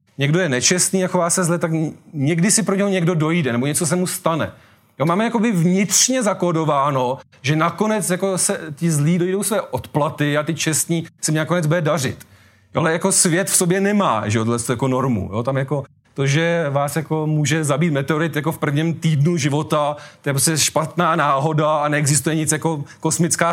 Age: 30-49